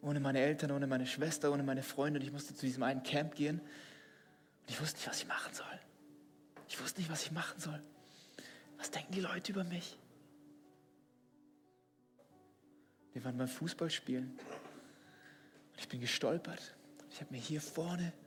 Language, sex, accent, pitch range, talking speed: German, male, German, 145-180 Hz, 170 wpm